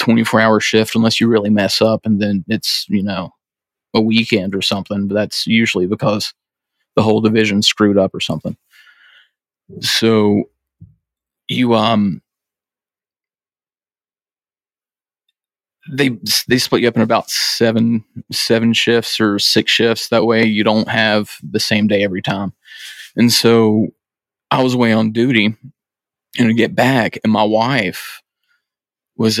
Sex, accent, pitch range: male, American, 110-115 Hz